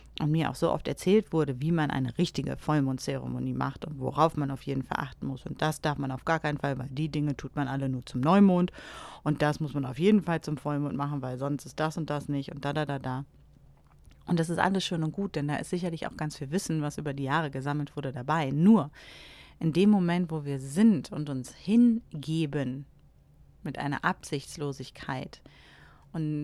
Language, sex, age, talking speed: German, female, 30-49, 220 wpm